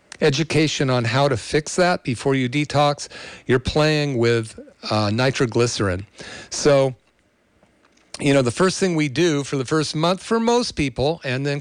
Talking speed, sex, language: 160 wpm, male, English